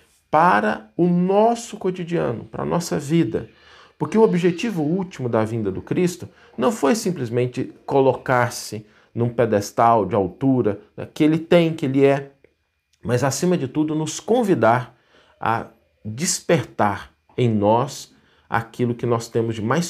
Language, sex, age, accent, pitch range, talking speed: Portuguese, male, 50-69, Brazilian, 110-155 Hz, 140 wpm